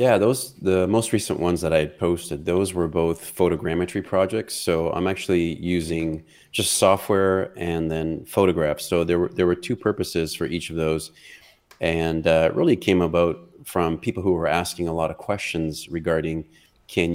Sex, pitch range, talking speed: male, 80-95 Hz, 180 wpm